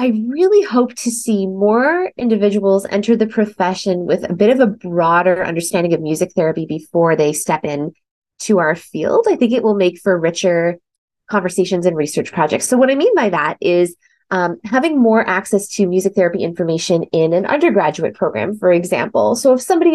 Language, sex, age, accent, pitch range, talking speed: English, female, 20-39, American, 175-235 Hz, 185 wpm